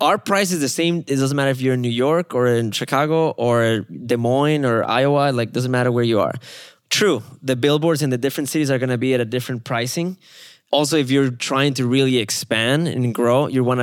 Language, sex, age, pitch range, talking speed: English, male, 20-39, 125-145 Hz, 230 wpm